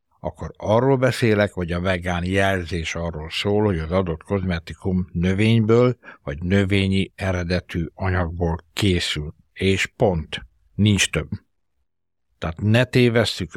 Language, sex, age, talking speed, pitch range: Hungarian, male, 60-79, 115 wpm, 85-105 Hz